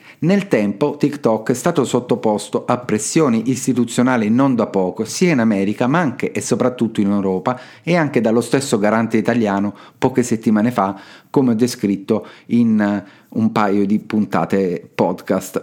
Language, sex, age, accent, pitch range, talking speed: Italian, male, 40-59, native, 105-130 Hz, 150 wpm